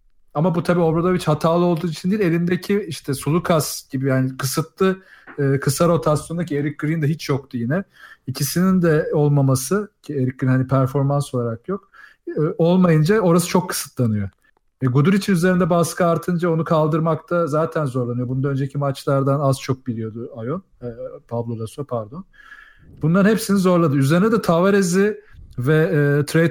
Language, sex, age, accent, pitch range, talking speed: Turkish, male, 40-59, native, 135-170 Hz, 150 wpm